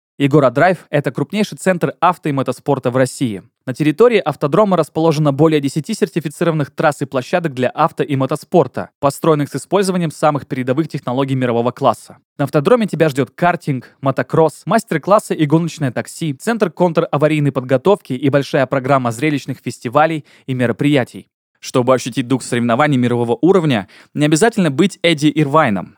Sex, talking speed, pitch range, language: male, 145 wpm, 125-160 Hz, Russian